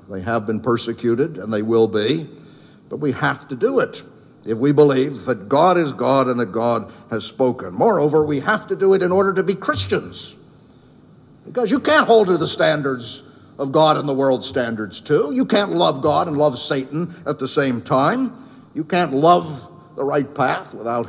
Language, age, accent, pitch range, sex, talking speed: English, 60-79, American, 100-145 Hz, male, 195 wpm